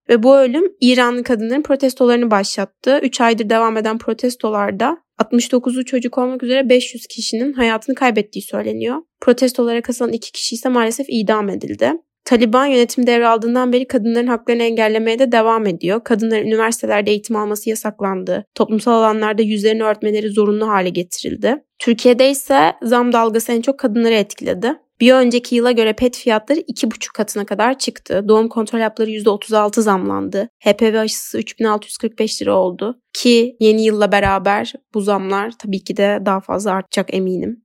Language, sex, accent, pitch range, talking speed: Turkish, female, native, 210-250 Hz, 145 wpm